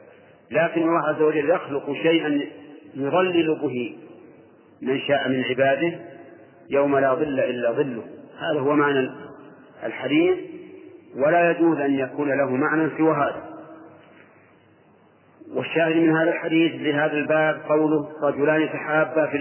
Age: 40-59